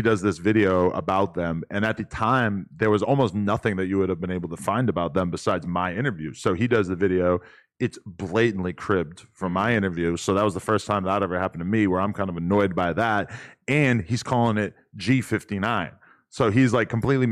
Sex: male